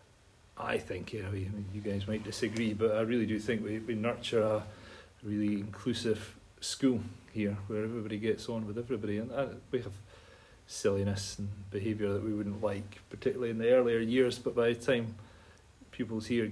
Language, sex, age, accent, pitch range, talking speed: English, male, 30-49, British, 100-120 Hz, 180 wpm